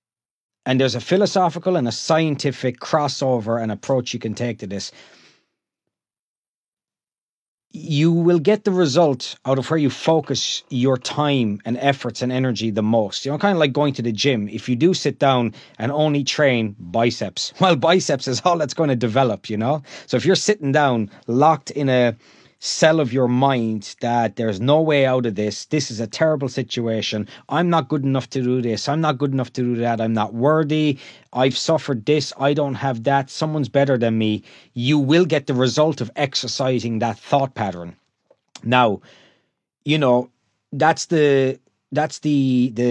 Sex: male